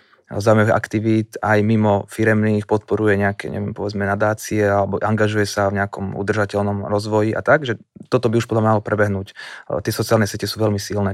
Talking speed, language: 170 wpm, Slovak